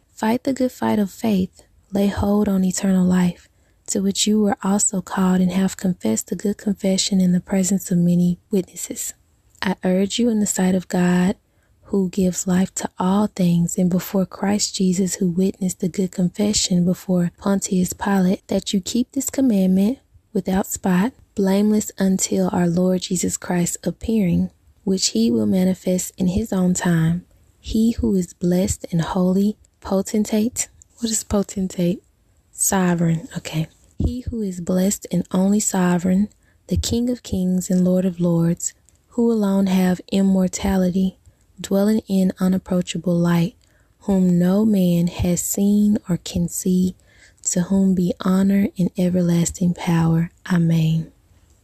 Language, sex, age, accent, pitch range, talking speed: English, female, 20-39, American, 180-200 Hz, 150 wpm